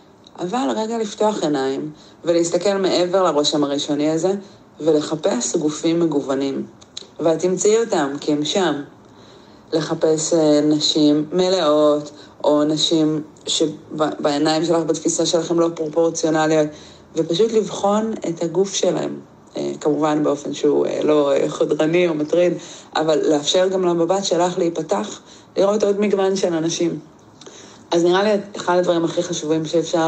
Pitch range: 150-180 Hz